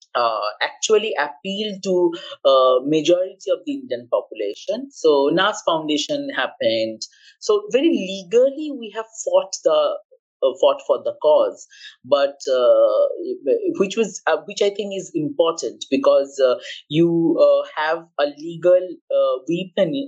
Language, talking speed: English, 135 wpm